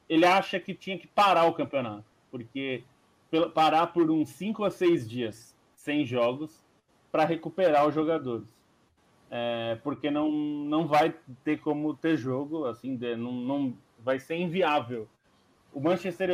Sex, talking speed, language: male, 150 wpm, Portuguese